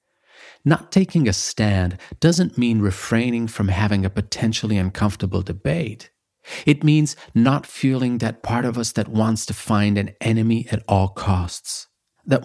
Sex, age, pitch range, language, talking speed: male, 40-59, 100-125 Hz, Italian, 150 wpm